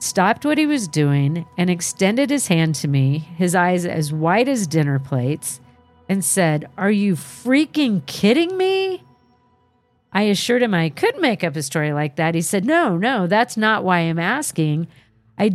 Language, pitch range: English, 150-205 Hz